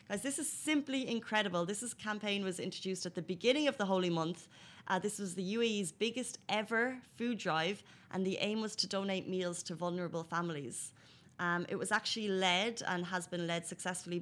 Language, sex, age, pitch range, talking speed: Arabic, female, 20-39, 170-205 Hz, 195 wpm